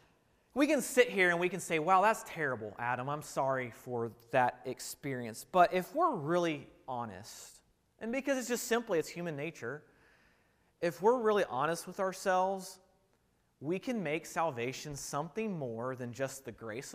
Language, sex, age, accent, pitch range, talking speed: English, male, 30-49, American, 130-205 Hz, 165 wpm